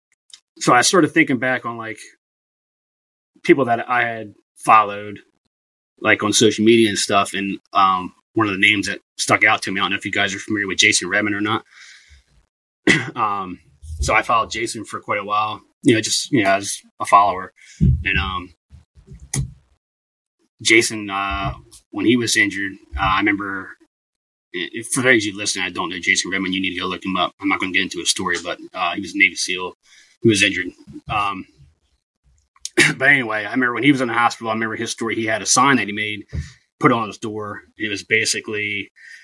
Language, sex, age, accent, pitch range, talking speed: English, male, 30-49, American, 95-115 Hz, 205 wpm